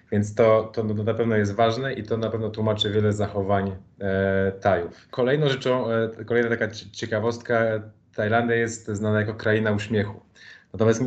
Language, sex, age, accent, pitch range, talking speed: Polish, male, 20-39, native, 105-115 Hz, 155 wpm